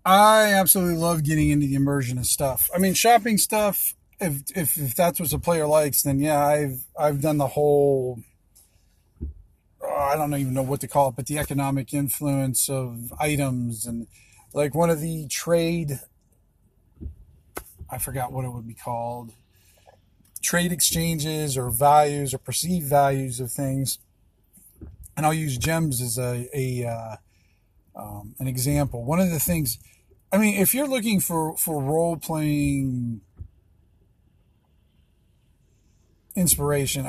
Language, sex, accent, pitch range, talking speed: English, male, American, 120-165 Hz, 150 wpm